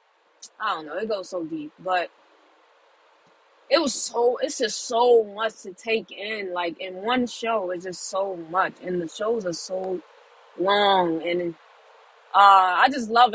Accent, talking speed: American, 165 wpm